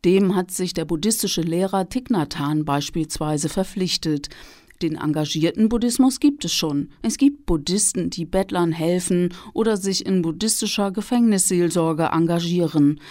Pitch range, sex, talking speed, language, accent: 165-210 Hz, female, 125 wpm, German, German